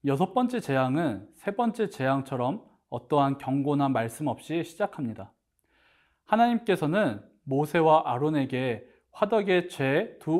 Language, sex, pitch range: Korean, male, 135-185 Hz